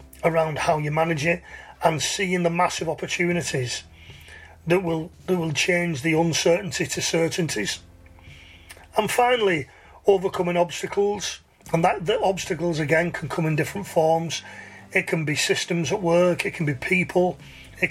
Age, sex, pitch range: 40-59, male, 150-180 Hz